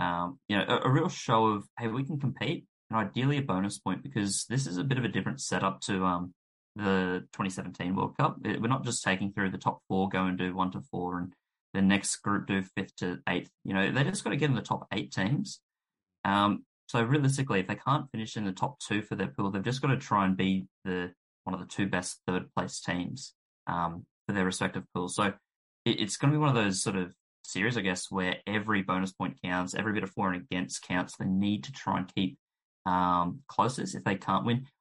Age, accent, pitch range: 20-39, Australian, 95-120 Hz